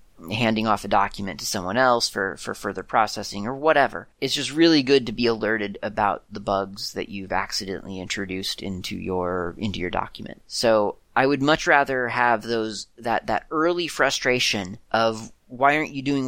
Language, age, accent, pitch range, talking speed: English, 30-49, American, 105-135 Hz, 175 wpm